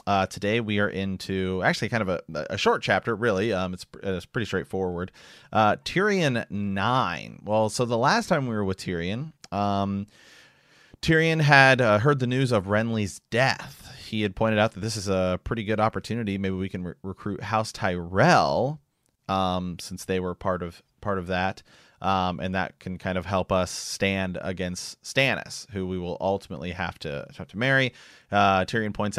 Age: 30-49